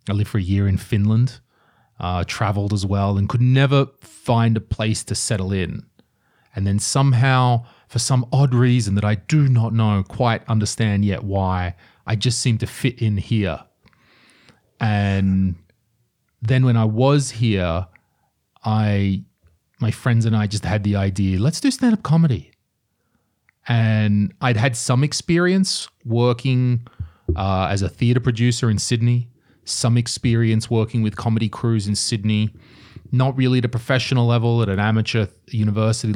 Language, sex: English, male